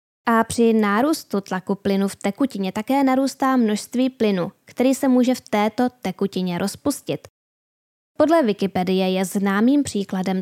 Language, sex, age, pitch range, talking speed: Czech, female, 10-29, 195-245 Hz, 130 wpm